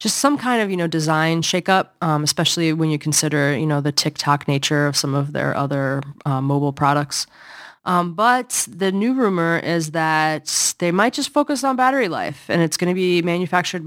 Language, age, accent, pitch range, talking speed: English, 20-39, American, 150-185 Hz, 200 wpm